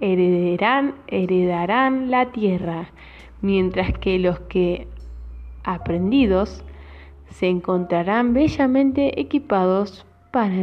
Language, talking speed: Spanish, 80 wpm